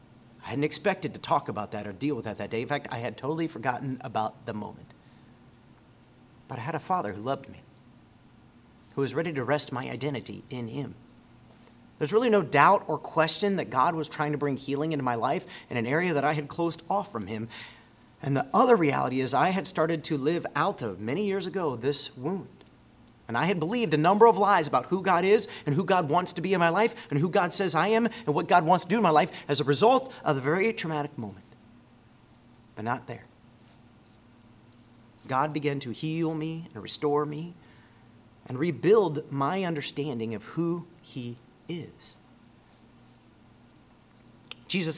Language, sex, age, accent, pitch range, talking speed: English, male, 40-59, American, 120-165 Hz, 195 wpm